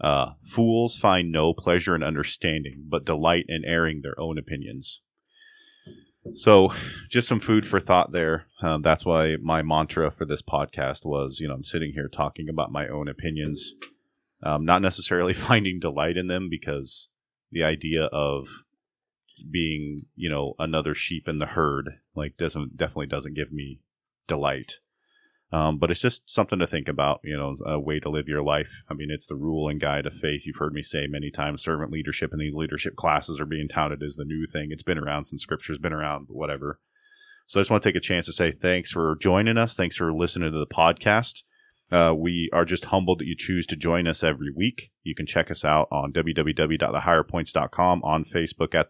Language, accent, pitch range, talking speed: English, American, 75-90 Hz, 200 wpm